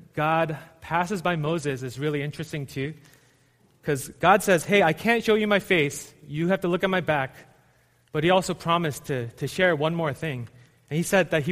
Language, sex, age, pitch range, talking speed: English, male, 30-49, 135-180 Hz, 210 wpm